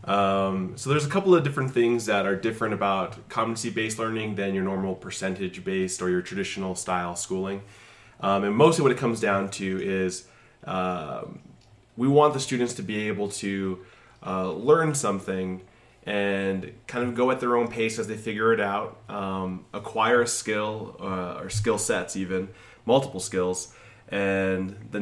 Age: 20-39